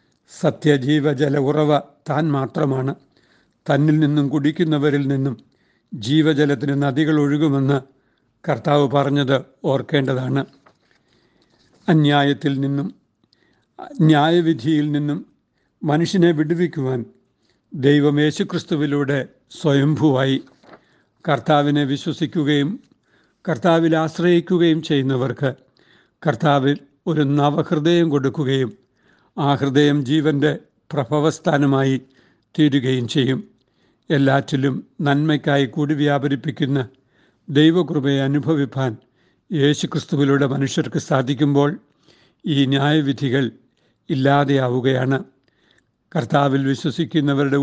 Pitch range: 135-155 Hz